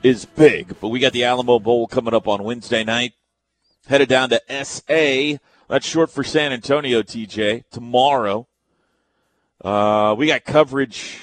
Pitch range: 135-200 Hz